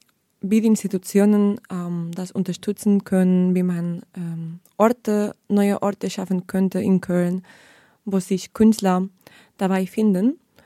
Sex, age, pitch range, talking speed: female, 20-39, 185-220 Hz, 125 wpm